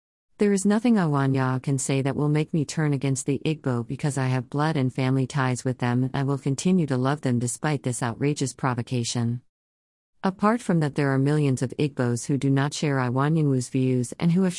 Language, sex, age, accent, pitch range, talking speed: English, female, 50-69, American, 125-155 Hz, 210 wpm